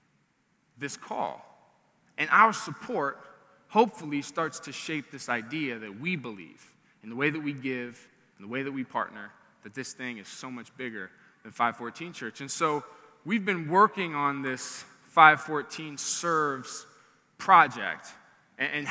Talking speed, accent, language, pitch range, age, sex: 150 wpm, American, English, 140-190 Hz, 20-39, male